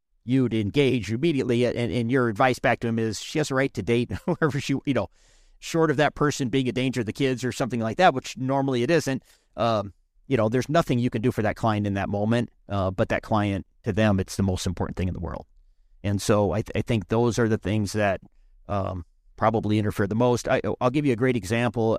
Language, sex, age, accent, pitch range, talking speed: English, male, 40-59, American, 100-120 Hz, 245 wpm